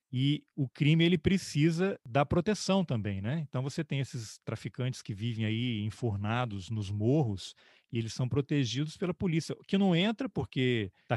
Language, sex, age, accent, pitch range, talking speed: Portuguese, male, 40-59, Brazilian, 115-145 Hz, 165 wpm